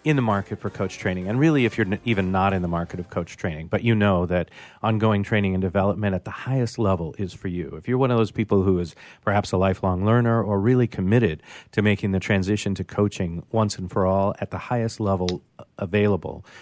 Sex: male